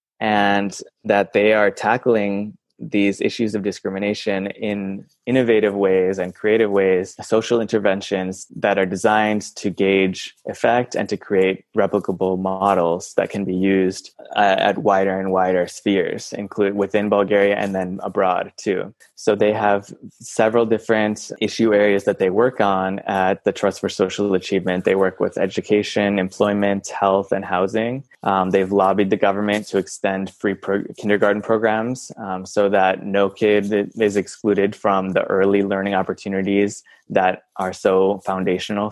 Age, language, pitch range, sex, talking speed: 20-39, English, 95-105 Hz, male, 150 wpm